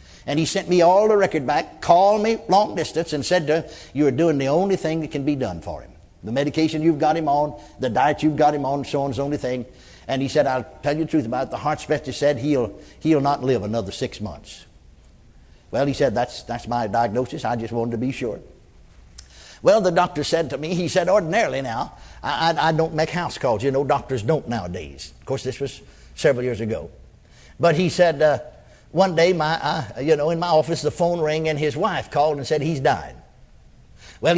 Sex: male